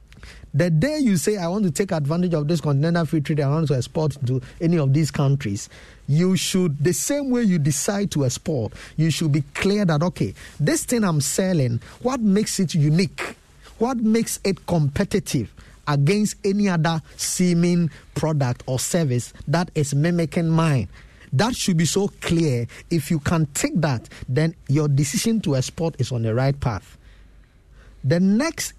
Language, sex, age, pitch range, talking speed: English, male, 50-69, 140-195 Hz, 175 wpm